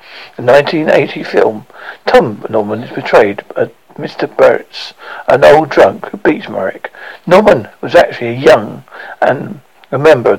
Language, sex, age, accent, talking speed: English, male, 60-79, British, 150 wpm